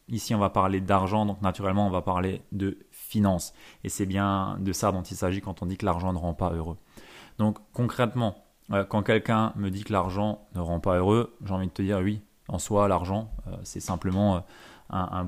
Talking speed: 210 wpm